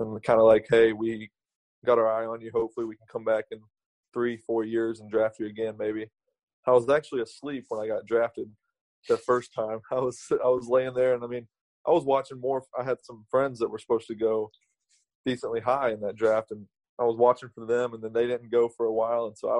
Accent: American